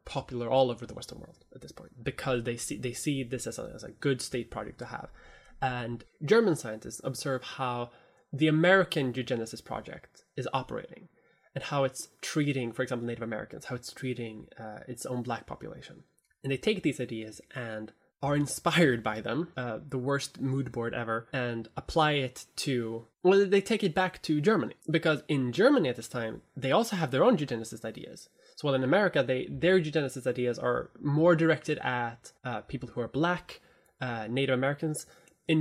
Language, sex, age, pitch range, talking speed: English, male, 20-39, 125-160 Hz, 185 wpm